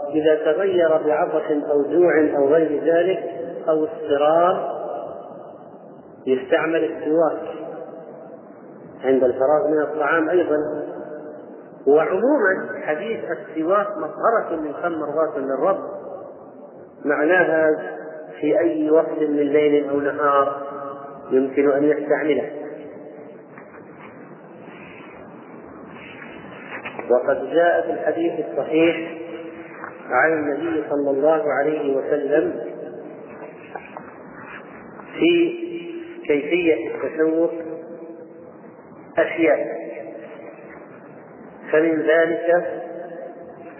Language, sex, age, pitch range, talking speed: Arabic, male, 40-59, 150-170 Hz, 70 wpm